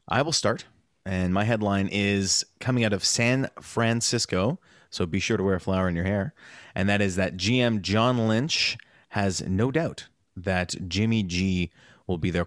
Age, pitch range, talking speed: 30-49, 90-110 Hz, 185 wpm